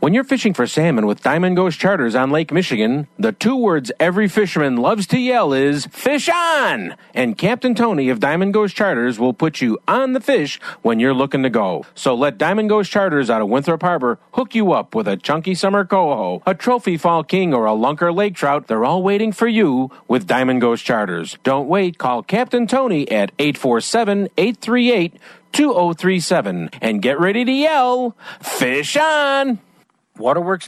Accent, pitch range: American, 145-230 Hz